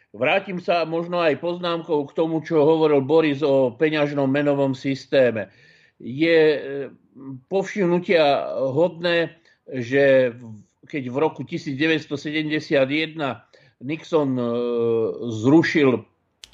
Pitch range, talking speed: 135-160 Hz, 85 wpm